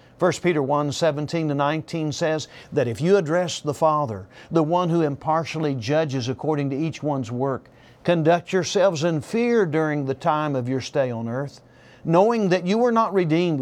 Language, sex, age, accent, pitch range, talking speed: English, male, 50-69, American, 130-180 Hz, 170 wpm